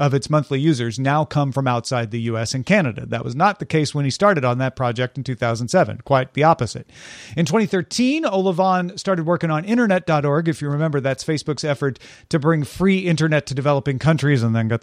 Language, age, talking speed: English, 40-59, 205 wpm